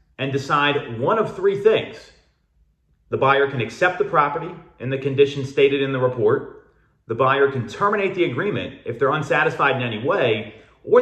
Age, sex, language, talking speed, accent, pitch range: 40-59, male, English, 175 wpm, American, 130-170 Hz